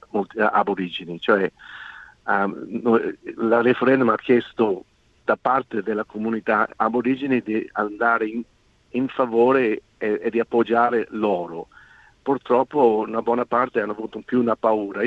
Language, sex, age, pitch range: Italian, male, 50-69, 110-125 Hz